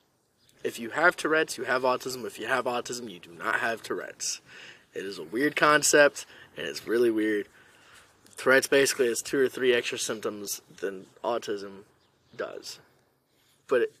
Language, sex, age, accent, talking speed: English, male, 20-39, American, 160 wpm